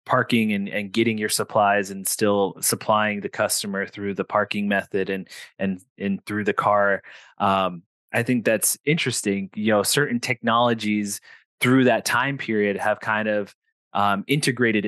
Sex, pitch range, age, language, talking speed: male, 100-115 Hz, 20-39, English, 155 wpm